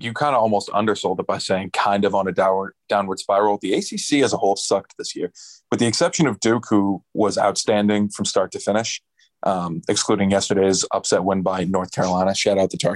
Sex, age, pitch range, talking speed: male, 20-39, 100-130 Hz, 215 wpm